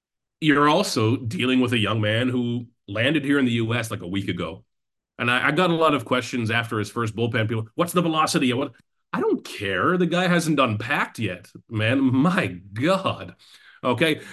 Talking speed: 200 wpm